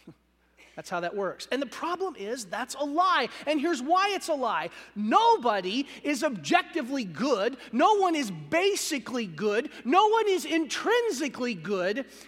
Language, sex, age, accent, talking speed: English, male, 40-59, American, 150 wpm